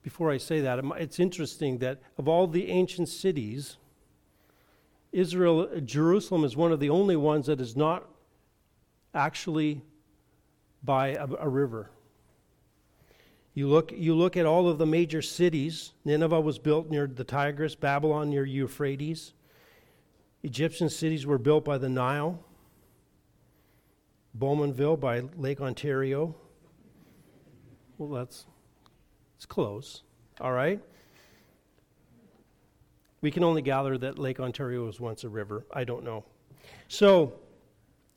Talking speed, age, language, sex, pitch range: 125 wpm, 50-69, English, male, 135-170 Hz